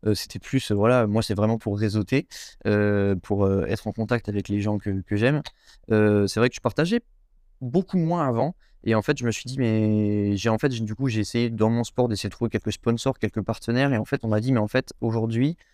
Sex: male